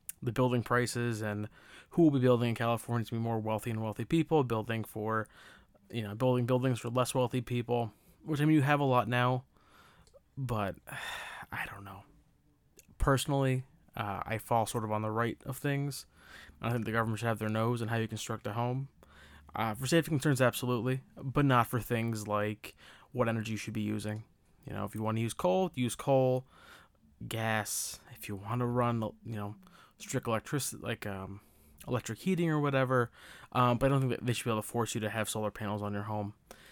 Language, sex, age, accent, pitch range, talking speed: English, male, 20-39, American, 110-135 Hz, 205 wpm